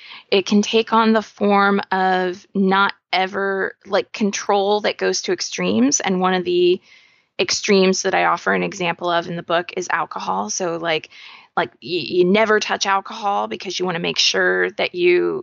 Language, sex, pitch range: English, female, 180-215 Hz